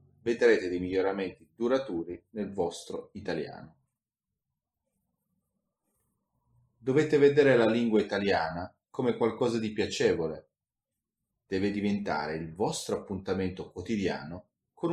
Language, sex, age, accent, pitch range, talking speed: Italian, male, 30-49, native, 90-115 Hz, 90 wpm